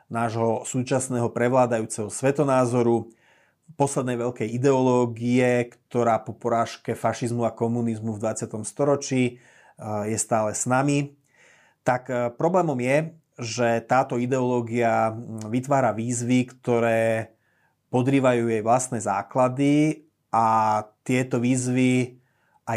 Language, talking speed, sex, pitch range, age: Slovak, 100 wpm, male, 115-135 Hz, 30-49